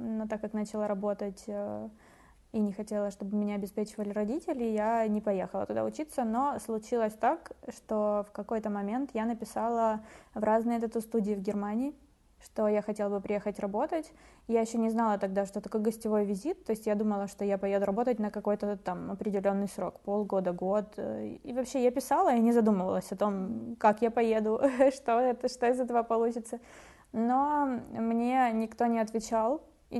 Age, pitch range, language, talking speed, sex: 20-39, 205-235 Hz, Ukrainian, 170 wpm, female